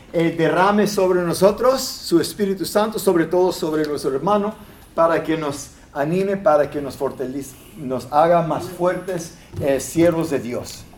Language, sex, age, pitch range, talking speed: English, male, 50-69, 140-175 Hz, 155 wpm